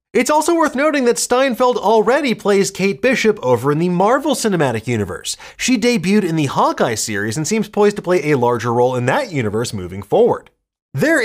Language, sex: English, male